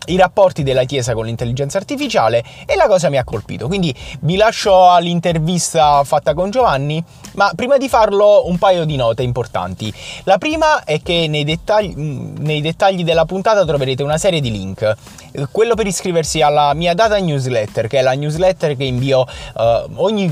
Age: 20-39